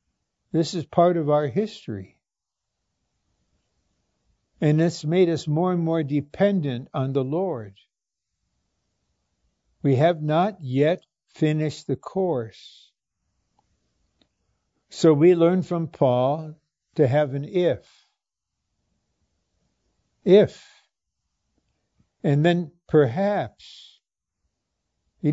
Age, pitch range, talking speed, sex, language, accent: 60-79, 135-180 Hz, 90 wpm, male, English, American